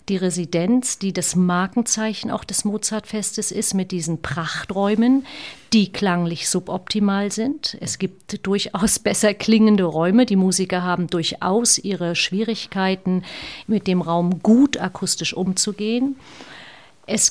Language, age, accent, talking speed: German, 50-69, German, 120 wpm